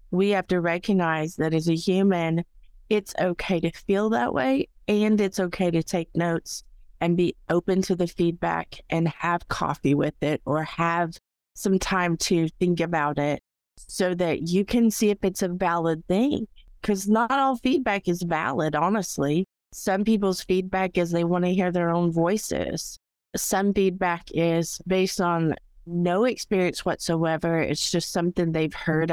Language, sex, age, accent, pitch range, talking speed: English, female, 30-49, American, 165-195 Hz, 165 wpm